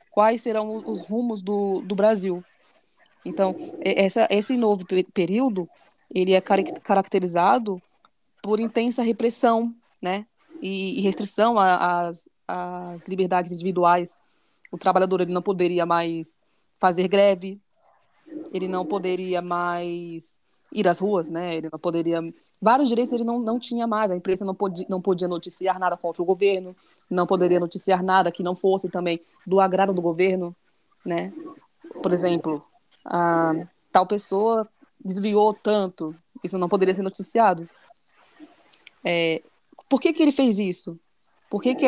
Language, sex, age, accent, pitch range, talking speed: Portuguese, female, 20-39, Brazilian, 180-220 Hz, 140 wpm